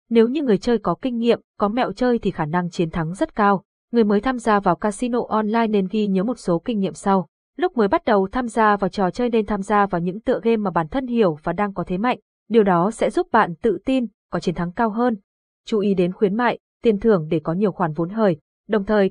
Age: 20-39